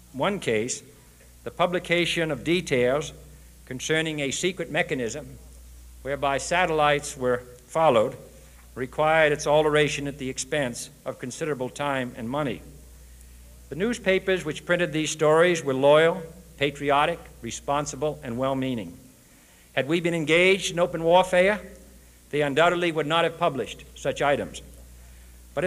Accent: American